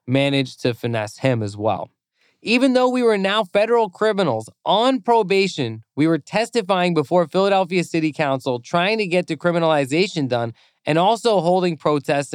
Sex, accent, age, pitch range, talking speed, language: male, American, 20-39, 135-180 Hz, 150 wpm, English